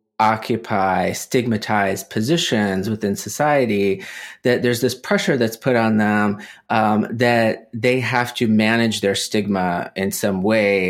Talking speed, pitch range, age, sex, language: 130 wpm, 100-125 Hz, 30-49, male, English